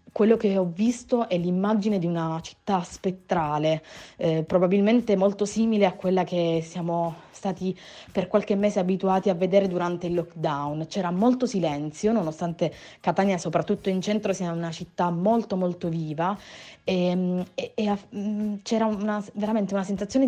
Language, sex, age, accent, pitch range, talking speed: Italian, female, 30-49, native, 175-215 Hz, 150 wpm